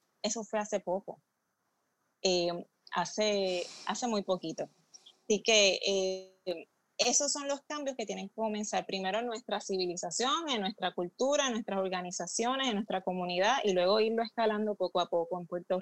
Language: Spanish